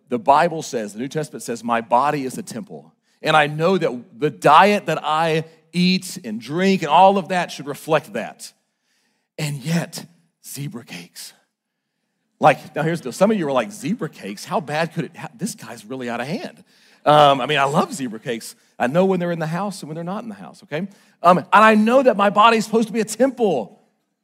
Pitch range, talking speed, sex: 145-215 Hz, 225 wpm, male